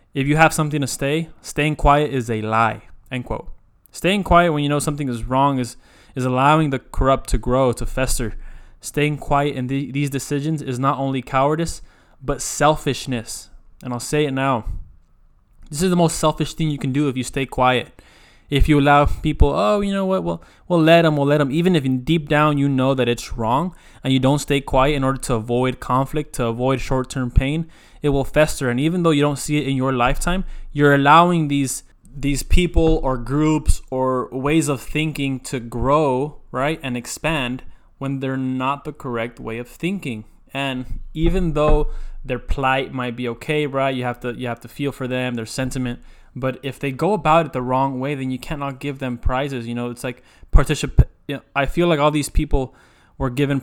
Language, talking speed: English, 210 wpm